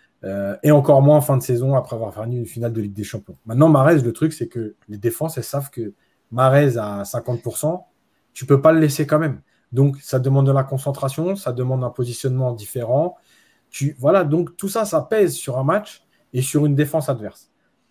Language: French